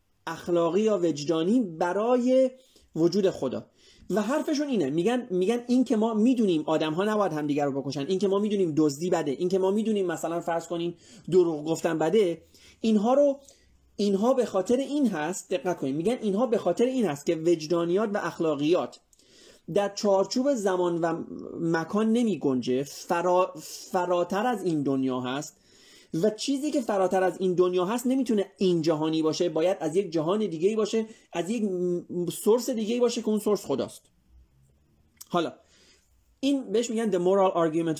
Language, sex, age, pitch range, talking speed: Persian, male, 30-49, 160-220 Hz, 165 wpm